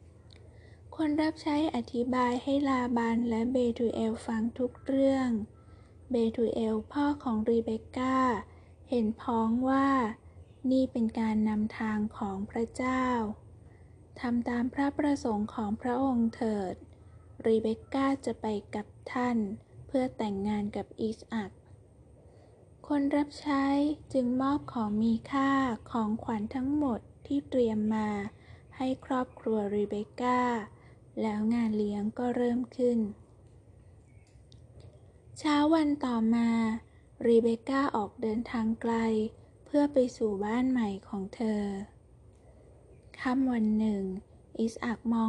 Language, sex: Thai, female